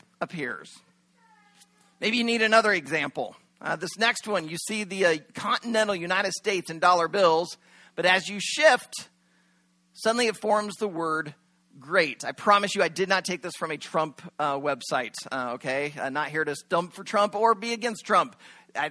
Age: 40-59